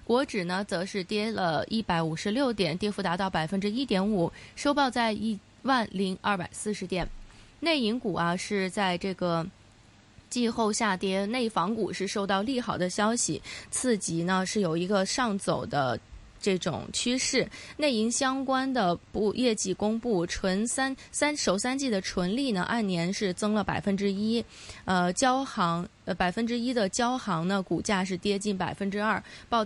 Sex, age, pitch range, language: female, 20-39, 185-230 Hz, Chinese